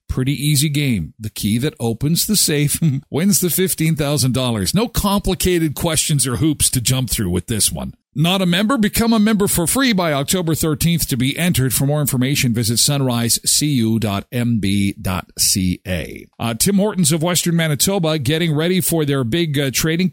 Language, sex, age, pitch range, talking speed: English, male, 50-69, 125-170 Hz, 160 wpm